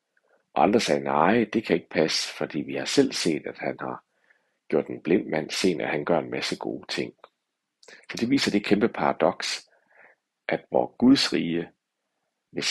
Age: 60-79